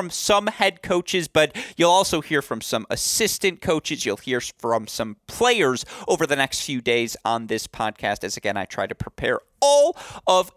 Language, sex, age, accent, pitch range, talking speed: English, male, 30-49, American, 115-170 Hz, 185 wpm